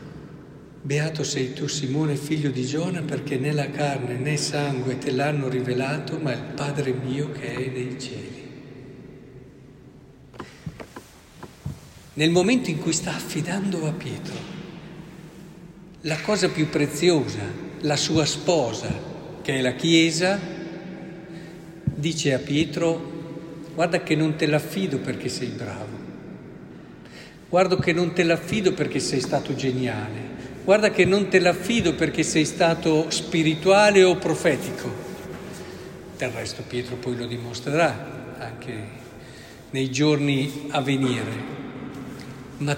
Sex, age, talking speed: male, 50-69, 125 wpm